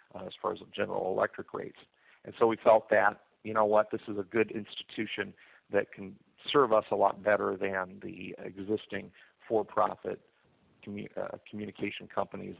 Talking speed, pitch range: 170 wpm, 100-110 Hz